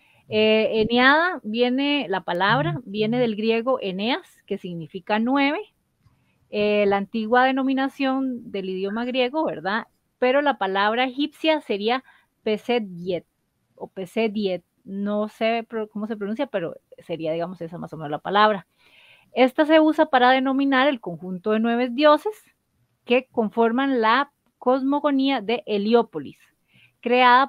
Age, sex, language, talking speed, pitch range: 30-49, female, Spanish, 130 wpm, 205-270 Hz